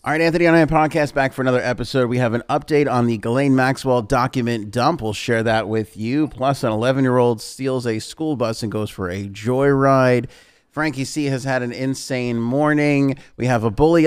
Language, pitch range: English, 105-130 Hz